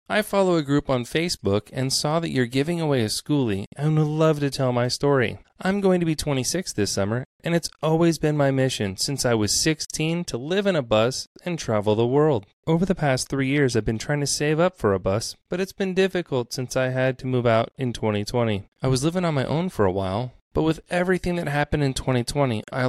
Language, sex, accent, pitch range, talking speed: English, male, American, 110-160 Hz, 235 wpm